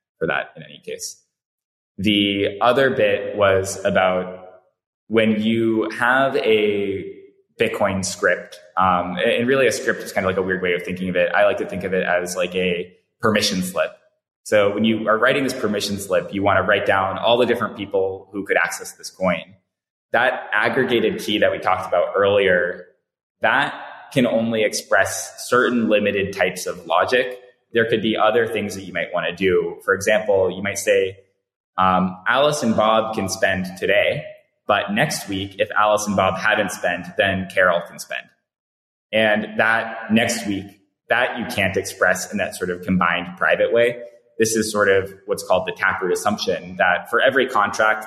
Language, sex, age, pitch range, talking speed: English, male, 20-39, 95-140 Hz, 180 wpm